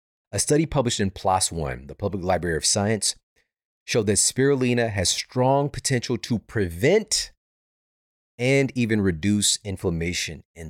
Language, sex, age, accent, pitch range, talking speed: English, male, 30-49, American, 85-110 Hz, 135 wpm